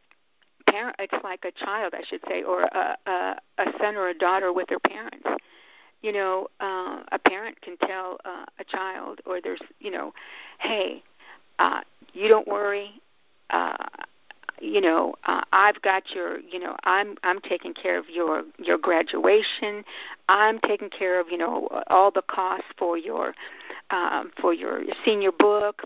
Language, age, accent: English, 50-69, American